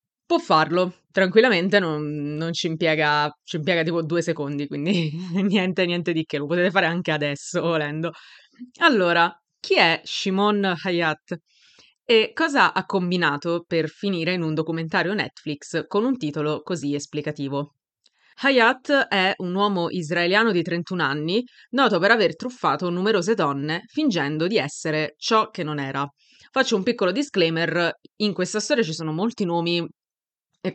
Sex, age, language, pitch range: female, 20-39, Italian, 160-200 Hz